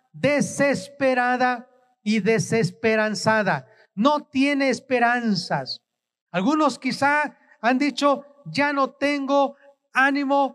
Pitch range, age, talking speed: 230-275 Hz, 40-59, 80 wpm